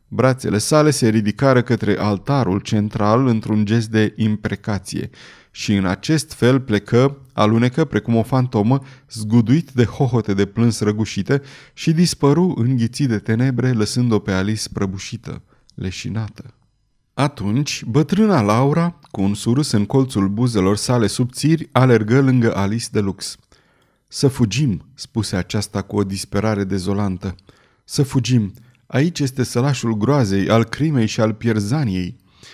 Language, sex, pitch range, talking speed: Romanian, male, 105-135 Hz, 130 wpm